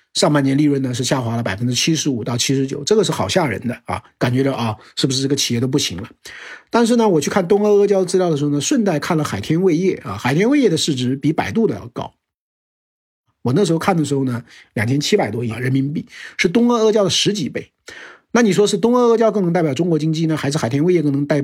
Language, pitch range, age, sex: Chinese, 135-190 Hz, 50-69, male